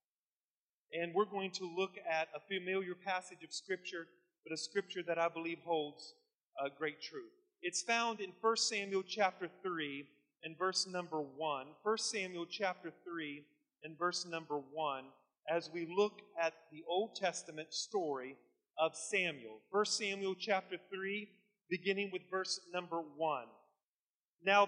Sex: male